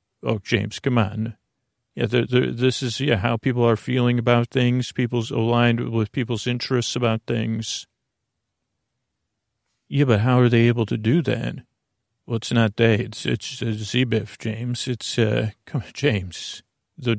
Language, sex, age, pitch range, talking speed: English, male, 40-59, 110-125 Hz, 165 wpm